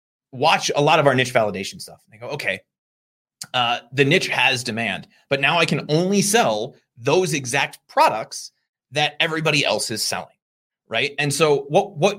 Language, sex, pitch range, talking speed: English, male, 120-165 Hz, 175 wpm